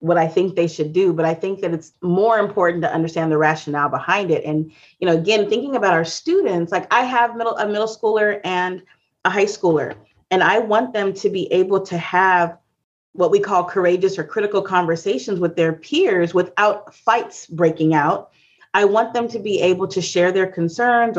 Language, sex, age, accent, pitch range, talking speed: English, female, 30-49, American, 170-230 Hz, 200 wpm